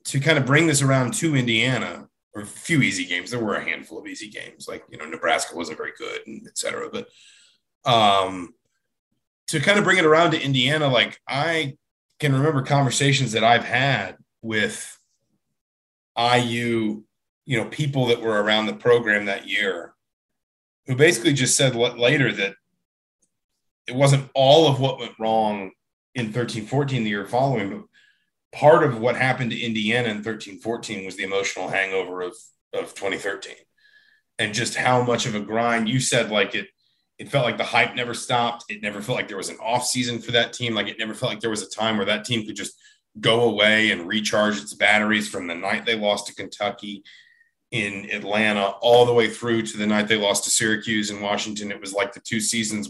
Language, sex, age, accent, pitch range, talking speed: English, male, 30-49, American, 105-130 Hz, 195 wpm